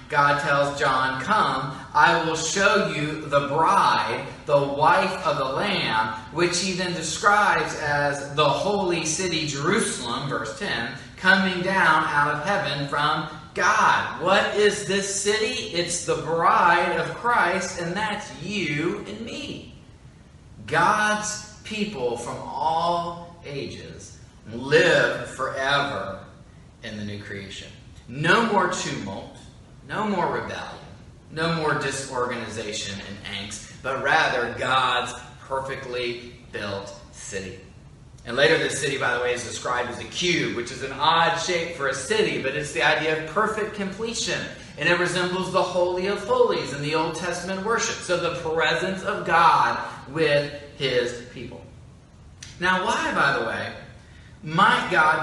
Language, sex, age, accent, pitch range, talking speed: English, male, 30-49, American, 130-190 Hz, 140 wpm